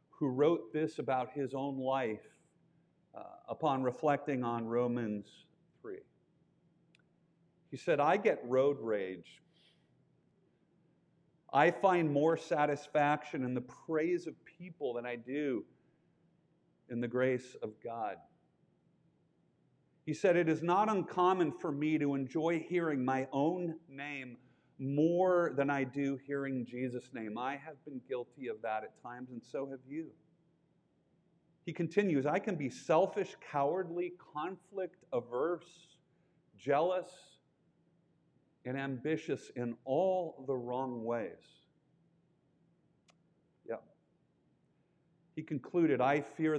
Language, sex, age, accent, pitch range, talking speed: English, male, 50-69, American, 130-170 Hz, 115 wpm